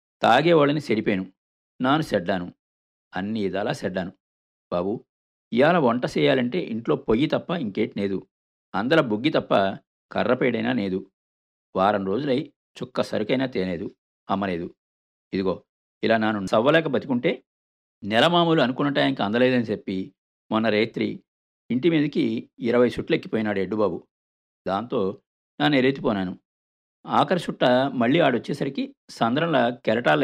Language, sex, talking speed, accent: Telugu, male, 105 wpm, native